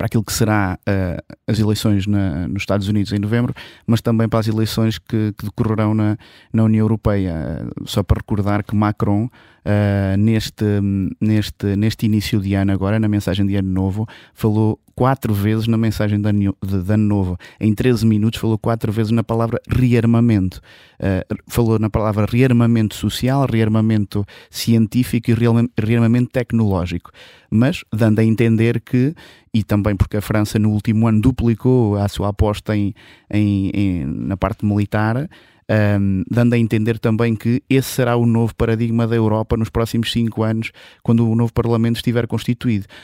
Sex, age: male, 20-39